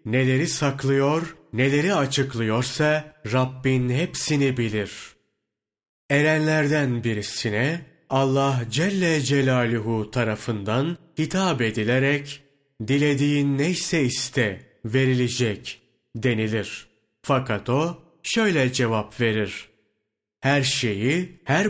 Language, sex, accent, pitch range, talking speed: Turkish, male, native, 120-155 Hz, 75 wpm